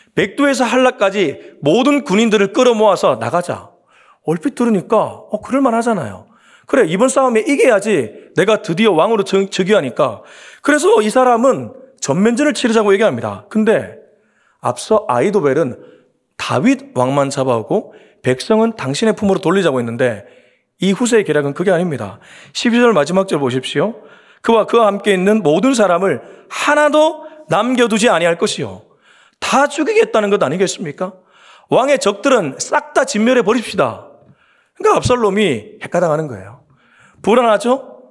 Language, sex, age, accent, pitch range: Korean, male, 30-49, native, 195-255 Hz